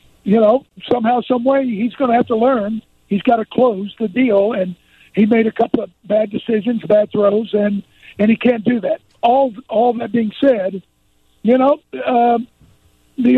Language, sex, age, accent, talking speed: English, male, 50-69, American, 185 wpm